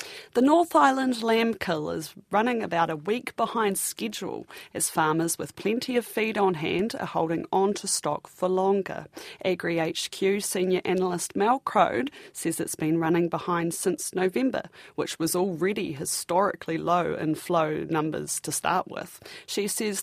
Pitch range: 155-185 Hz